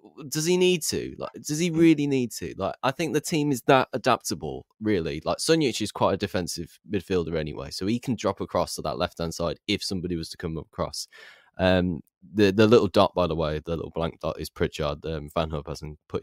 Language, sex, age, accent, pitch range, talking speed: English, male, 10-29, British, 80-110 Hz, 230 wpm